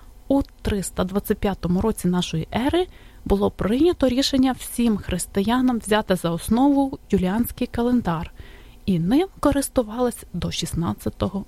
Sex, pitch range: female, 195-275 Hz